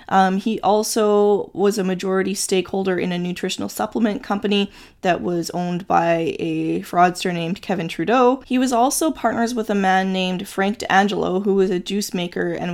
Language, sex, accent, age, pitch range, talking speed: English, female, American, 20-39, 185-220 Hz, 175 wpm